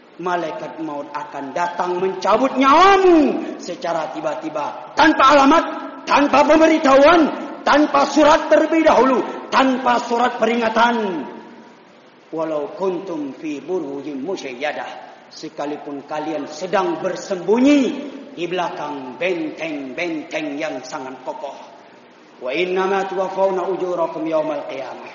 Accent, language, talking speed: native, Indonesian, 80 wpm